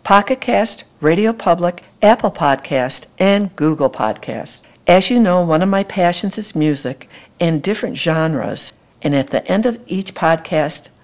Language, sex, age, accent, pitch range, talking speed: English, female, 60-79, American, 135-185 Hz, 150 wpm